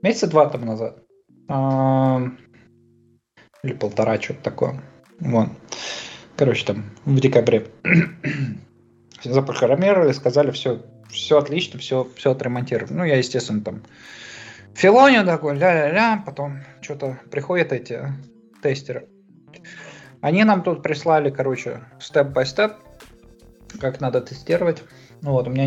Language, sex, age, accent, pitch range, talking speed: Russian, male, 20-39, native, 115-150 Hz, 110 wpm